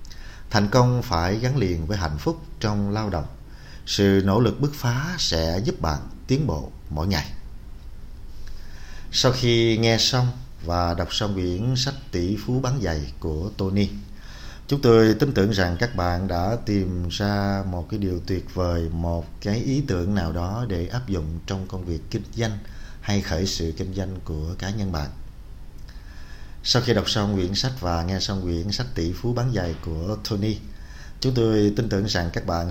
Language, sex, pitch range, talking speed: Vietnamese, male, 85-105 Hz, 185 wpm